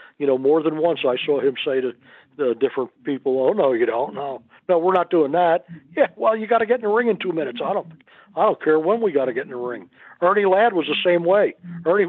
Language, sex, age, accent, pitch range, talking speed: English, male, 60-79, American, 150-185 Hz, 275 wpm